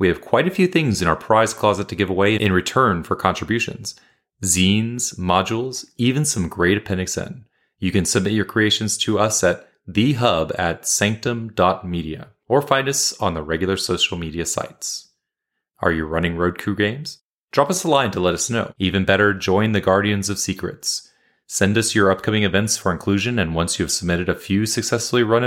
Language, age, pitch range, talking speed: English, 30-49, 90-115 Hz, 195 wpm